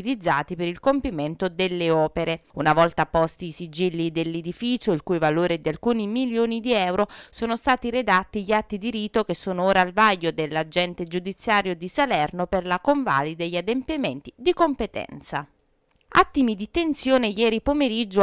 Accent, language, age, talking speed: native, Italian, 30-49, 165 wpm